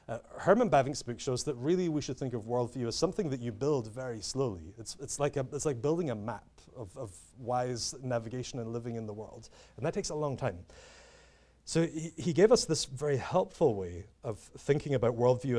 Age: 30-49